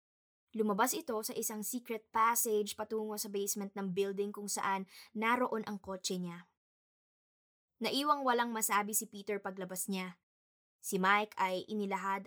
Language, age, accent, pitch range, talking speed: Filipino, 20-39, native, 195-225 Hz, 135 wpm